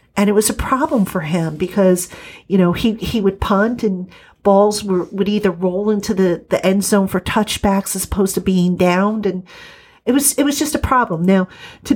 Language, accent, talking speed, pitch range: English, American, 210 wpm, 185-225 Hz